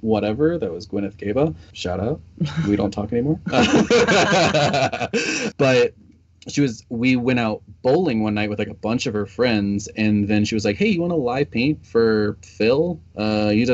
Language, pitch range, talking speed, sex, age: English, 100-115 Hz, 185 wpm, male, 20-39